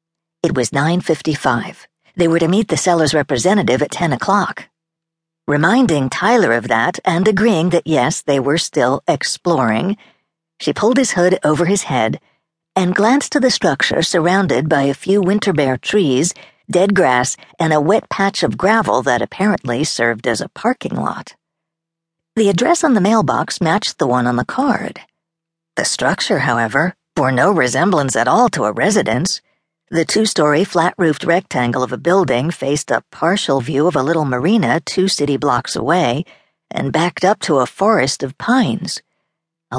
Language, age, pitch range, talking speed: English, 50-69, 150-195 Hz, 165 wpm